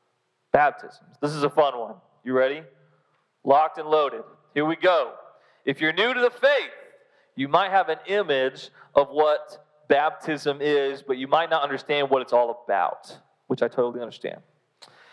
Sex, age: male, 30-49